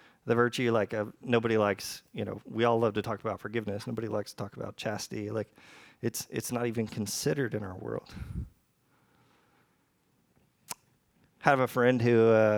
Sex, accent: male, American